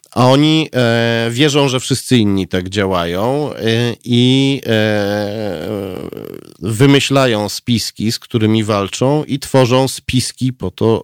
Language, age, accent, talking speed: Polish, 40-59, native, 105 wpm